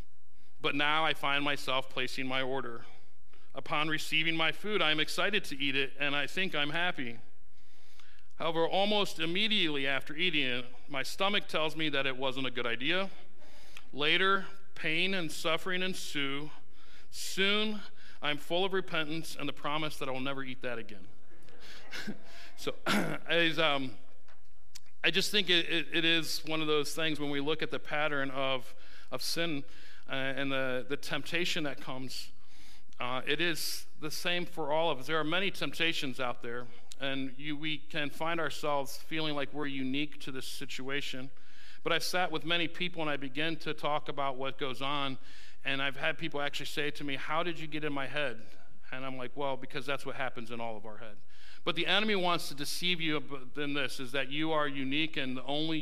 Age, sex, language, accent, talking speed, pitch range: 40-59, male, English, American, 190 wpm, 130-160 Hz